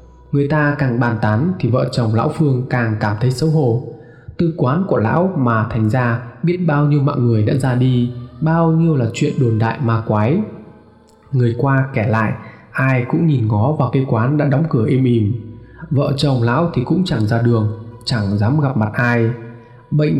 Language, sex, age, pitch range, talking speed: Vietnamese, male, 20-39, 120-155 Hz, 200 wpm